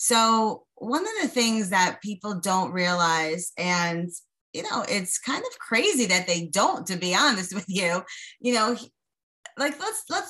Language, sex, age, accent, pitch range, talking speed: English, female, 30-49, American, 185-260 Hz, 170 wpm